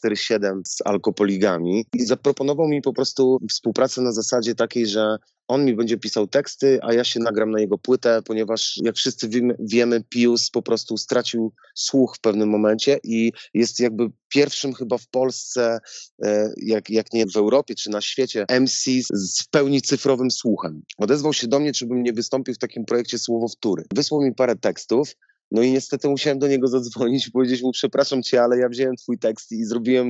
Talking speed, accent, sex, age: 185 wpm, native, male, 30-49